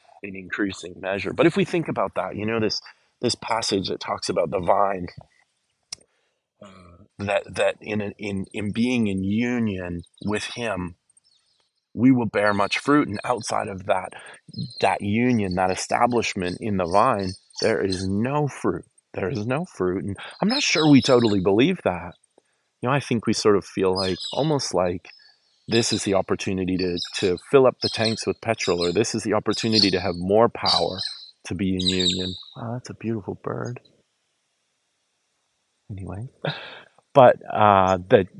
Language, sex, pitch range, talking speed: English, male, 95-115 Hz, 165 wpm